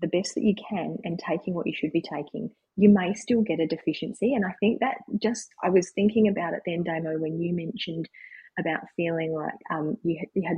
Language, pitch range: English, 160-220 Hz